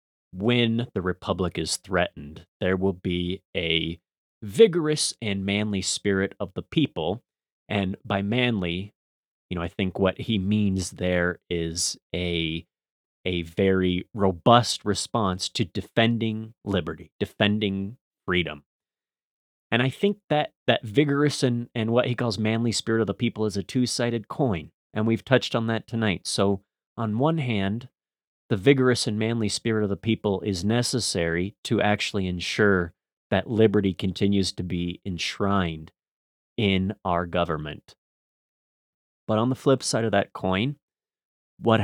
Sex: male